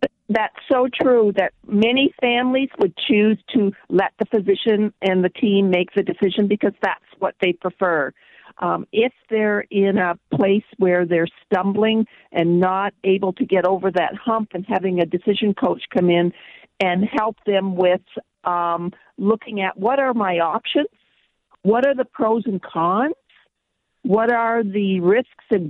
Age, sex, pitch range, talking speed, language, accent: 50-69, female, 185-225 Hz, 160 wpm, English, American